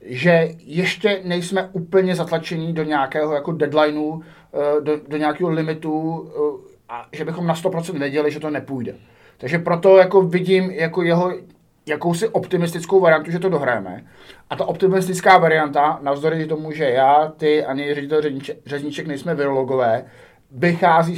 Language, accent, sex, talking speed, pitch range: Czech, native, male, 140 wpm, 140-165 Hz